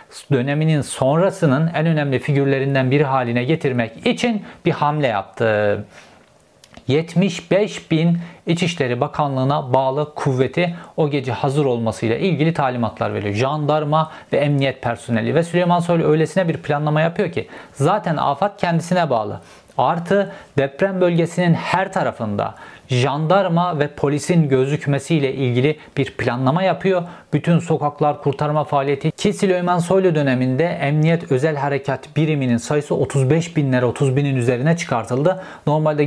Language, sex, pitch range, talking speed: Turkish, male, 130-175 Hz, 120 wpm